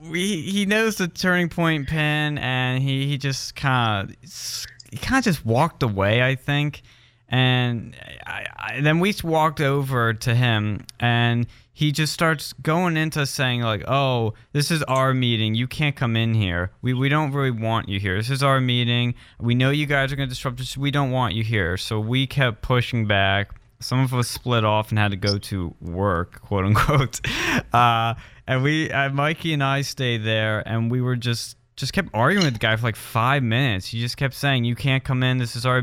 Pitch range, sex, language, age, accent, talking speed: 115-140 Hz, male, English, 20-39, American, 210 wpm